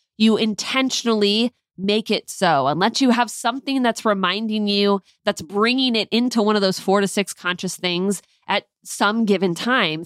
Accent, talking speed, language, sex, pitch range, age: American, 165 wpm, English, female, 195-235 Hz, 20-39